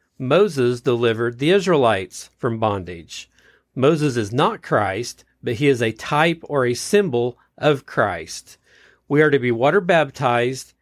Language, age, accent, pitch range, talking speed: English, 40-59, American, 115-150 Hz, 145 wpm